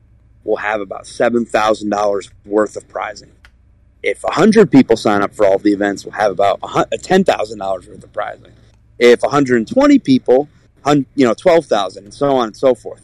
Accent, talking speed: American, 165 wpm